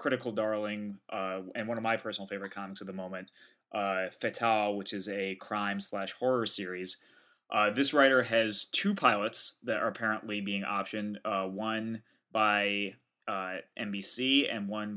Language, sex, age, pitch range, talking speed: English, male, 20-39, 100-120 Hz, 160 wpm